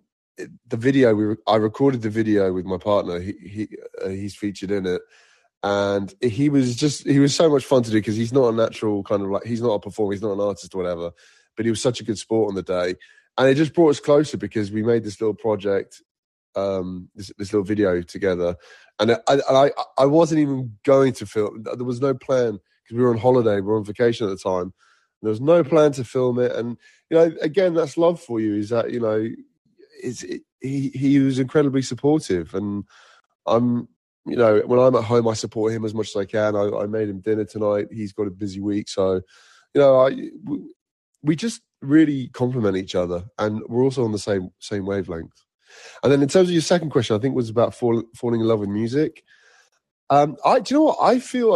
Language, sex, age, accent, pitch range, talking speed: English, male, 20-39, British, 105-140 Hz, 230 wpm